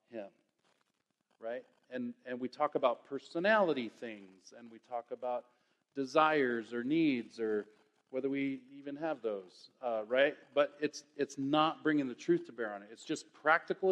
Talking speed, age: 165 wpm, 40-59